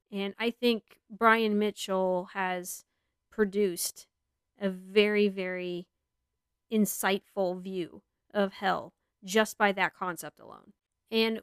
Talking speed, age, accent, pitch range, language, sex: 105 wpm, 30-49, American, 195-235 Hz, English, female